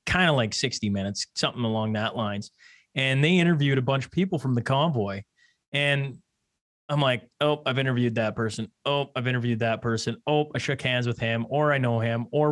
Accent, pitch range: American, 120-150 Hz